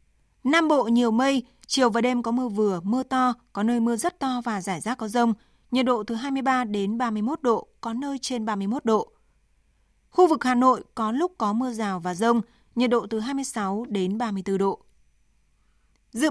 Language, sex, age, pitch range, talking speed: Vietnamese, female, 20-39, 215-260 Hz, 195 wpm